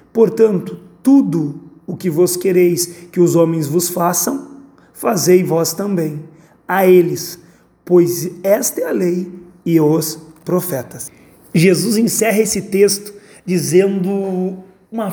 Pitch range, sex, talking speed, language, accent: 175-200 Hz, male, 120 wpm, Portuguese, Brazilian